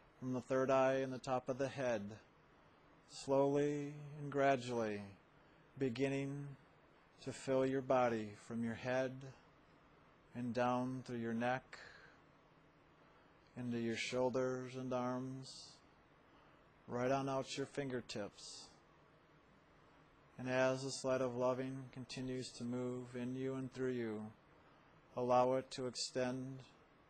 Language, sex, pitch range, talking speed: English, male, 125-135 Hz, 120 wpm